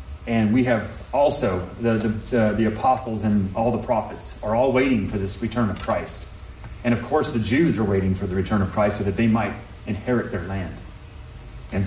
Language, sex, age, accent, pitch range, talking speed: English, male, 30-49, American, 105-135 Hz, 200 wpm